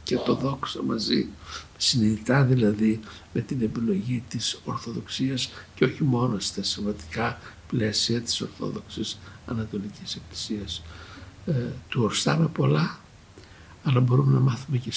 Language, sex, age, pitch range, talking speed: Greek, male, 60-79, 100-130 Hz, 115 wpm